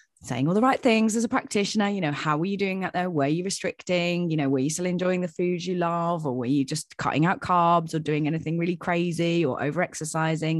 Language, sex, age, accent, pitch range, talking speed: English, female, 20-39, British, 145-185 Hz, 245 wpm